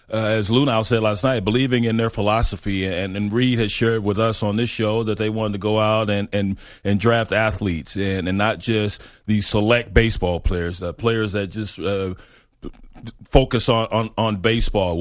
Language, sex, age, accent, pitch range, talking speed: English, male, 40-59, American, 100-115 Hz, 195 wpm